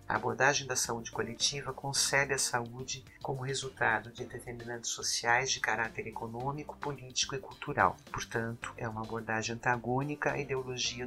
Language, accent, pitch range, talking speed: Portuguese, Brazilian, 115-130 Hz, 140 wpm